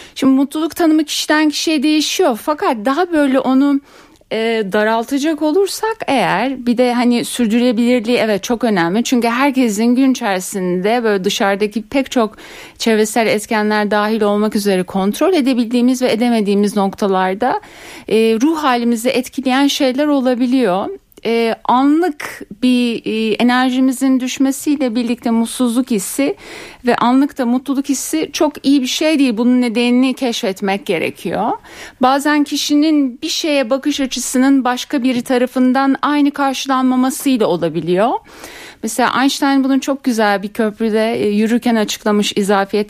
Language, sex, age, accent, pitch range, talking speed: Turkish, female, 60-79, native, 210-275 Hz, 125 wpm